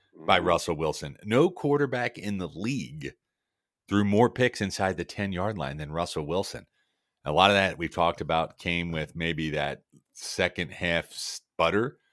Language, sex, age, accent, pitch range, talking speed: English, male, 40-59, American, 75-95 Hz, 165 wpm